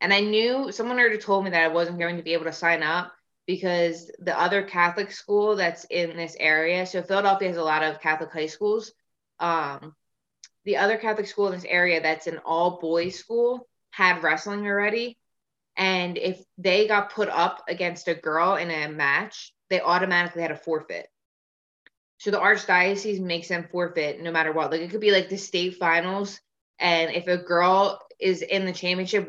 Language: English